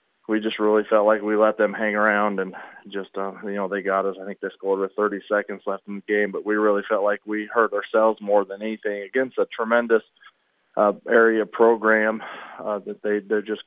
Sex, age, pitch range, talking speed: male, 20-39, 105-115 Hz, 225 wpm